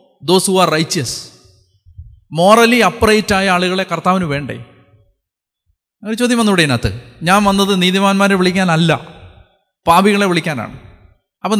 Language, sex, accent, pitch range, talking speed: Malayalam, male, native, 145-210 Hz, 110 wpm